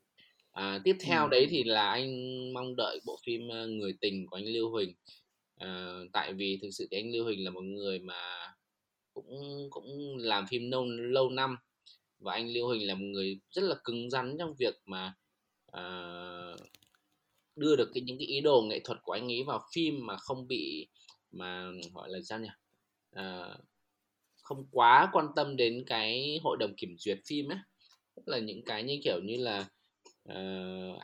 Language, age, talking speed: Vietnamese, 20-39, 185 wpm